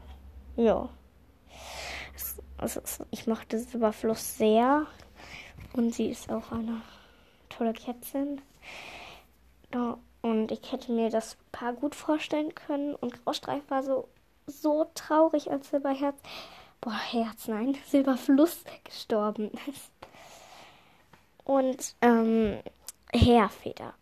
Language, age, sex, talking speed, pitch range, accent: German, 10-29, female, 95 wpm, 210-250 Hz, German